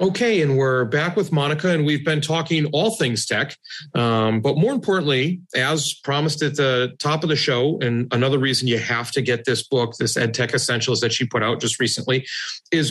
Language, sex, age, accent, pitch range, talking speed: English, male, 40-59, American, 120-155 Hz, 205 wpm